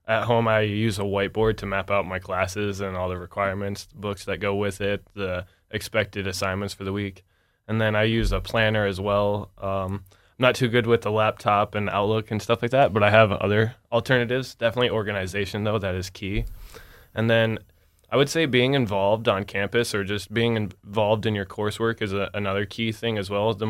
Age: 20-39